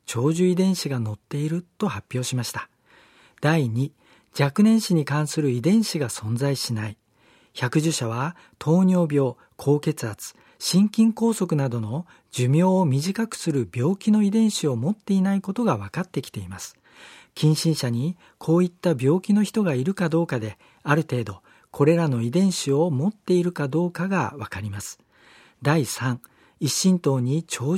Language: Japanese